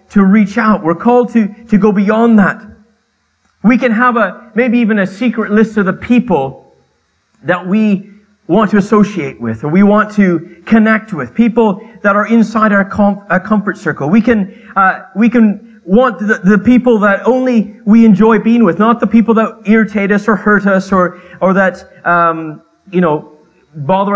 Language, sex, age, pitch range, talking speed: English, male, 30-49, 180-230 Hz, 185 wpm